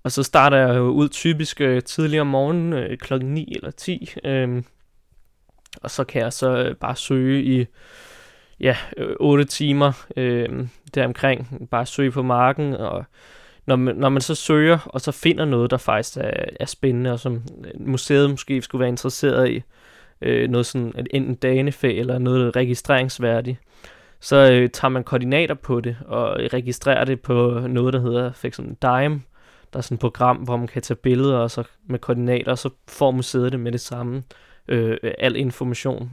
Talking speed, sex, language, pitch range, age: 180 wpm, male, Danish, 125-140 Hz, 20-39